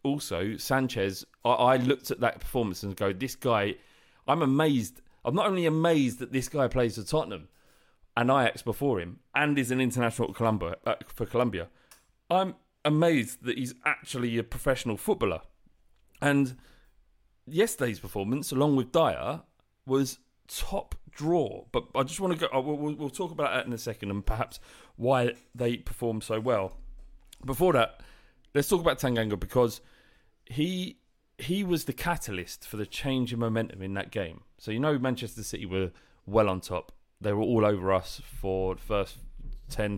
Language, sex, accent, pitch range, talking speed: English, male, British, 110-140 Hz, 160 wpm